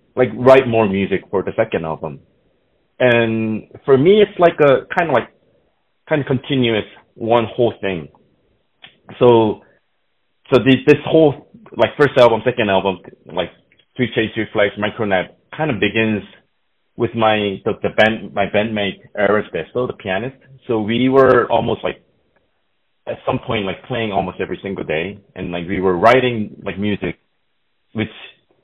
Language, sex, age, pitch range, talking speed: English, male, 30-49, 100-125 Hz, 155 wpm